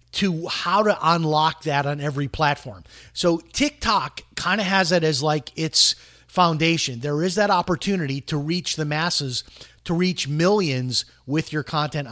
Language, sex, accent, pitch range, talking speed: English, male, American, 135-180 Hz, 160 wpm